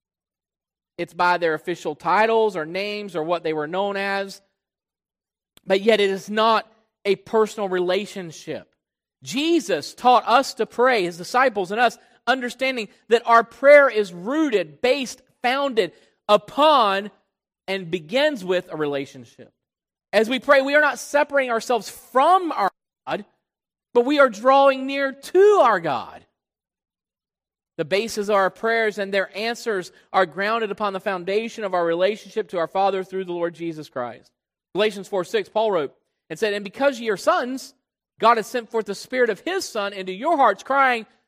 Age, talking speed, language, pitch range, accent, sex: 40-59, 165 wpm, English, 195-265 Hz, American, male